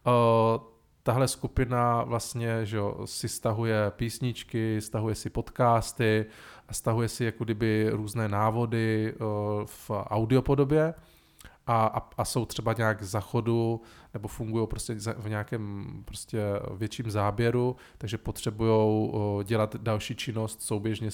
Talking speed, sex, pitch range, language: 125 wpm, male, 105-120 Hz, Czech